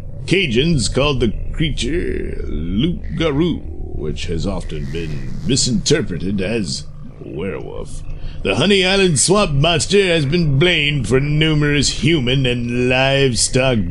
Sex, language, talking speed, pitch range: male, English, 110 wpm, 85-140 Hz